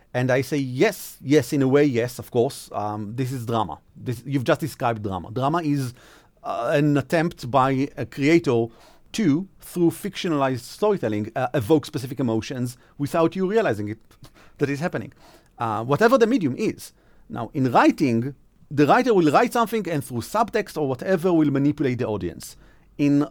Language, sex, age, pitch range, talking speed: English, male, 40-59, 130-185 Hz, 170 wpm